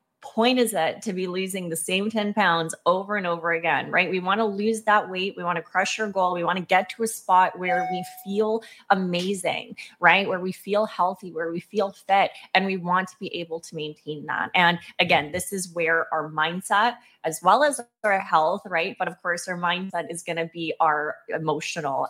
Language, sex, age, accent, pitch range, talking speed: English, female, 20-39, American, 170-215 Hz, 215 wpm